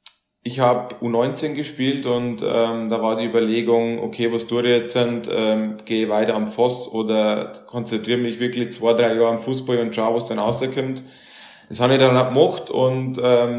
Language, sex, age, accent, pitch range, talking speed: German, male, 20-39, Austrian, 115-125 Hz, 185 wpm